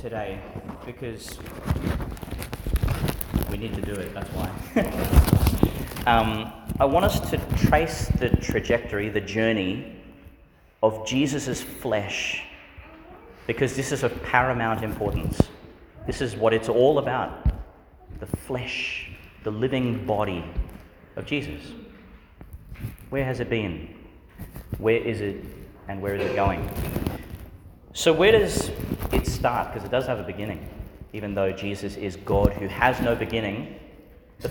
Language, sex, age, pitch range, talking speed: English, male, 30-49, 100-120 Hz, 130 wpm